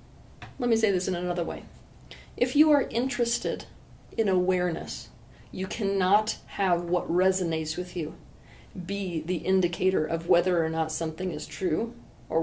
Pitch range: 160-195 Hz